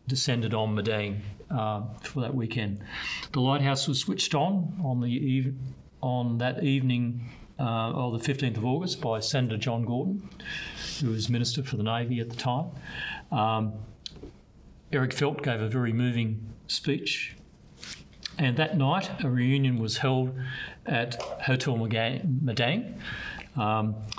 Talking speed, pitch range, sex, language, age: 135 wpm, 110-135 Hz, male, English, 50-69